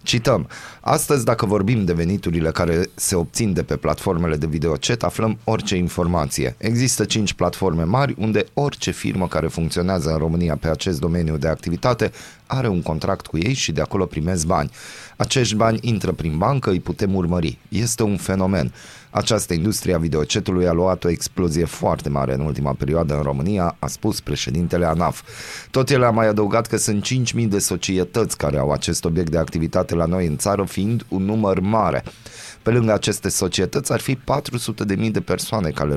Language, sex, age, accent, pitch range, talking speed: Romanian, male, 30-49, native, 85-110 Hz, 180 wpm